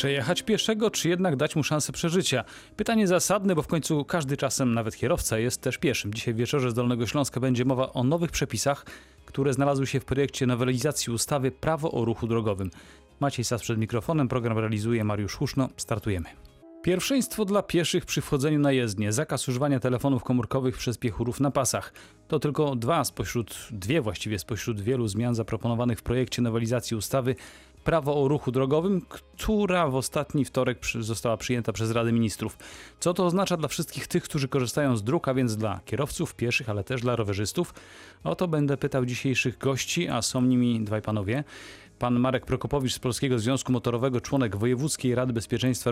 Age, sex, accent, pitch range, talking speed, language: 30-49, male, native, 115-145 Hz, 175 wpm, Polish